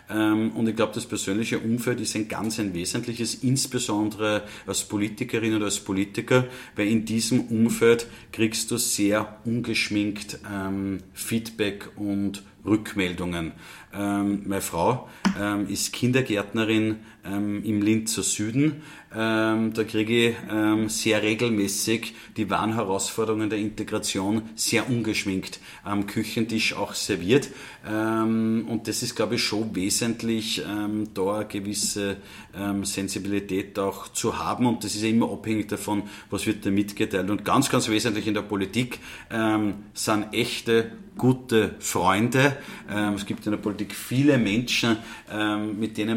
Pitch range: 100-115 Hz